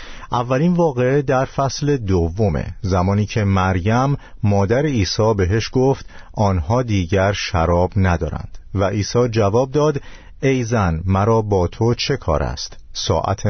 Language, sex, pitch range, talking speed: Persian, male, 90-125 Hz, 130 wpm